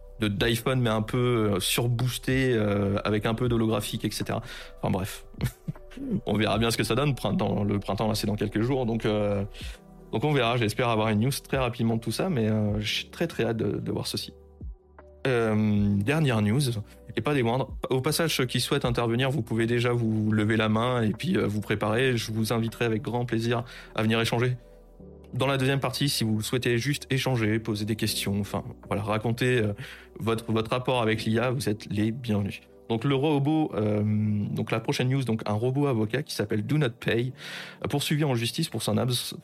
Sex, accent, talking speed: male, French, 205 wpm